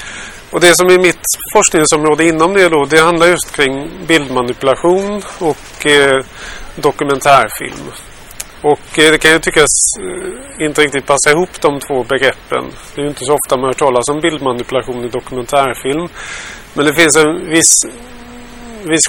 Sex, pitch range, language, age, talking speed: male, 130-165 Hz, Swedish, 30-49, 155 wpm